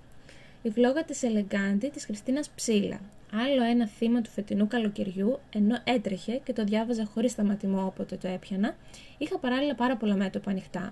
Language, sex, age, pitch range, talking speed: Greek, female, 20-39, 200-245 Hz, 160 wpm